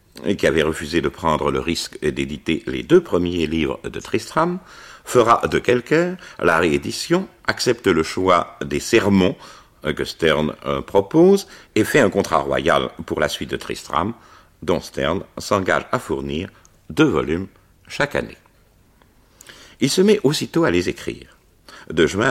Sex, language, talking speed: male, French, 150 wpm